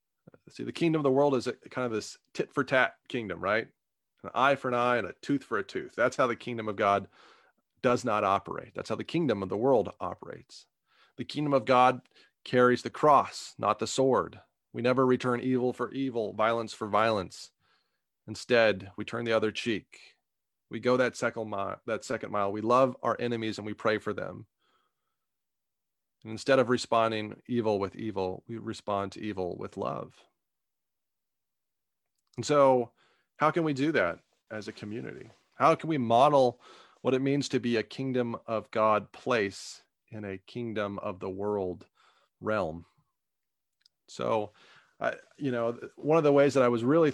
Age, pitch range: 30-49, 110-135 Hz